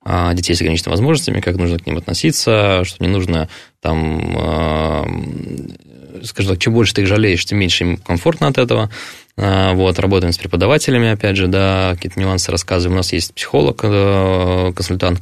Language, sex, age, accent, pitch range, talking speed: Russian, male, 20-39, native, 85-100 Hz, 160 wpm